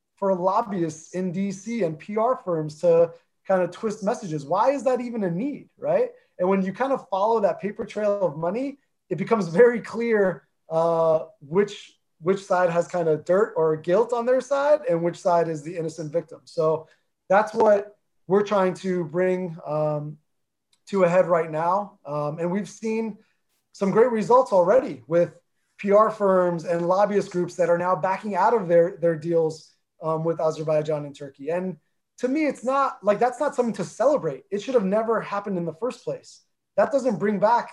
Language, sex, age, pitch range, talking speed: English, male, 30-49, 165-210 Hz, 190 wpm